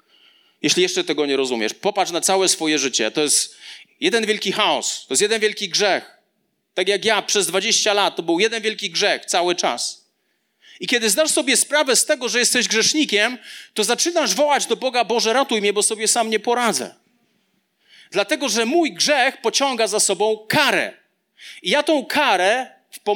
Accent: native